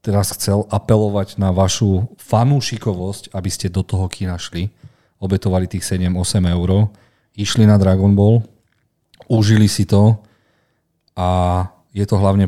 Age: 40-59